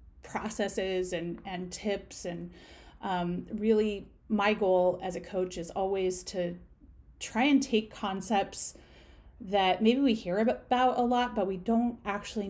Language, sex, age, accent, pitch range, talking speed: English, female, 30-49, American, 185-225 Hz, 145 wpm